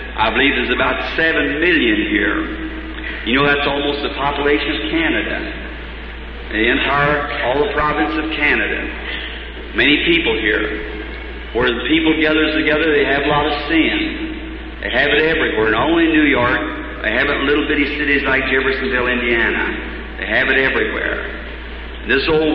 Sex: male